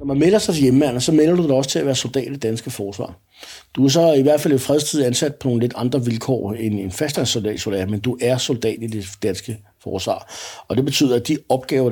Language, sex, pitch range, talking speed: Danish, male, 110-140 Hz, 250 wpm